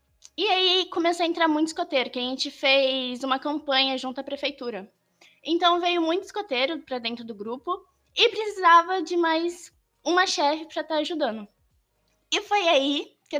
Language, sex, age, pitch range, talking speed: Portuguese, female, 10-29, 245-335 Hz, 165 wpm